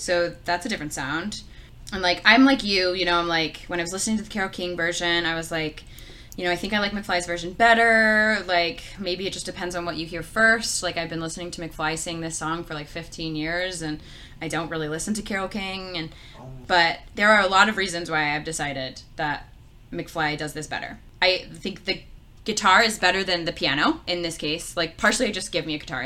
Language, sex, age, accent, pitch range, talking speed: English, female, 20-39, American, 160-200 Hz, 235 wpm